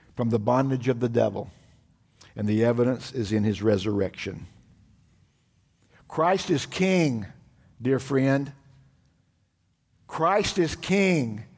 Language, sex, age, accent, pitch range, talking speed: English, male, 60-79, American, 125-180 Hz, 110 wpm